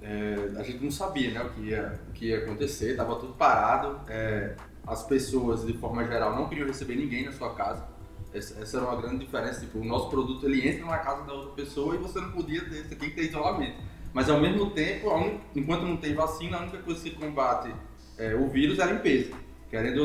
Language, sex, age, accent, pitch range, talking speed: Portuguese, male, 20-39, Brazilian, 120-165 Hz, 215 wpm